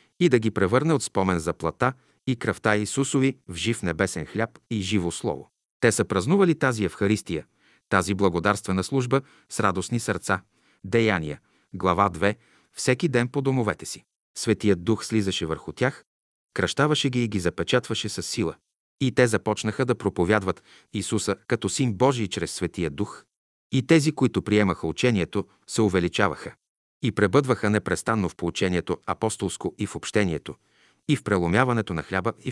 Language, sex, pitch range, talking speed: Bulgarian, male, 95-125 Hz, 155 wpm